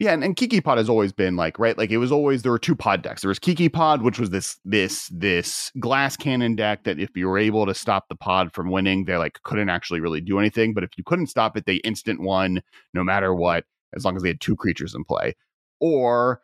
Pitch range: 95-120 Hz